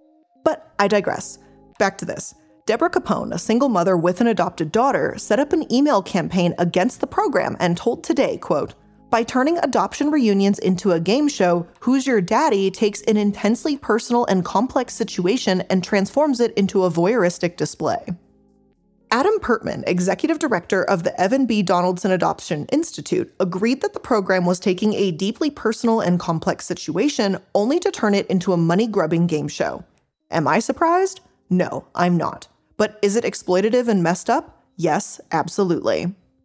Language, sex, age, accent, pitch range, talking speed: English, female, 20-39, American, 180-240 Hz, 165 wpm